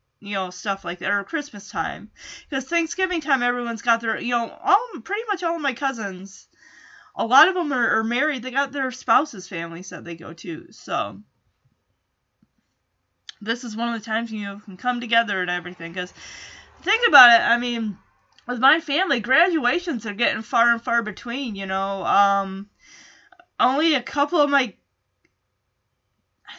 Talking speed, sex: 175 wpm, female